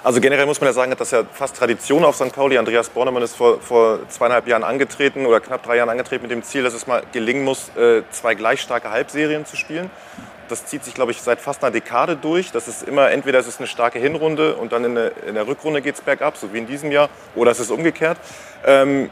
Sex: male